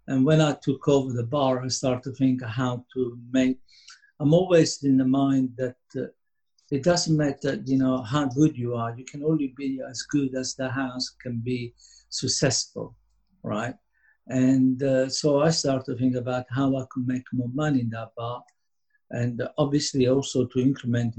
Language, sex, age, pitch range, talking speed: English, male, 50-69, 125-145 Hz, 185 wpm